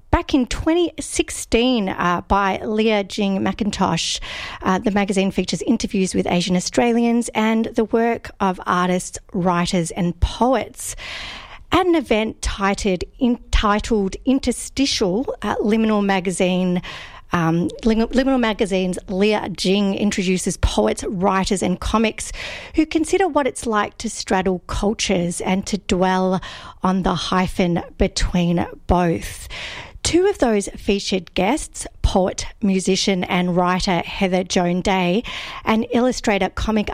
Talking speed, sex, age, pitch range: 125 wpm, female, 40-59, 185-230 Hz